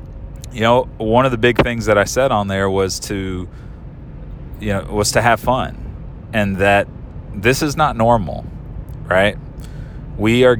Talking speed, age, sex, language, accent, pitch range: 165 wpm, 30-49, male, English, American, 100-120 Hz